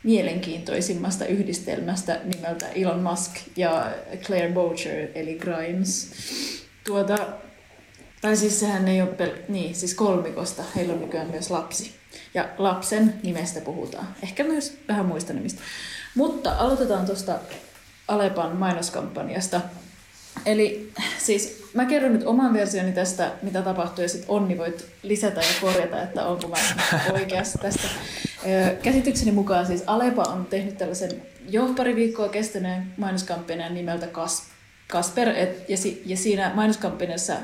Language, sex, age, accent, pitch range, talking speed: Finnish, female, 20-39, native, 175-205 Hz, 125 wpm